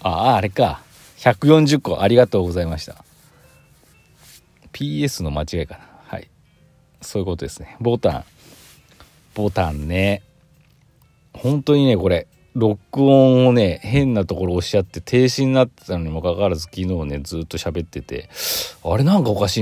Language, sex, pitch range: Japanese, male, 90-145 Hz